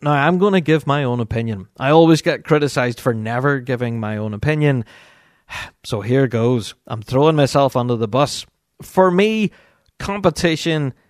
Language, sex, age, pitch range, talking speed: English, male, 30-49, 125-170 Hz, 160 wpm